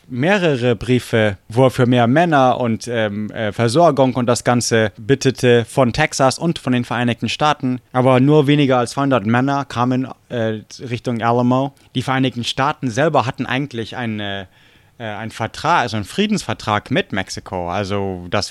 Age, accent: 20-39, German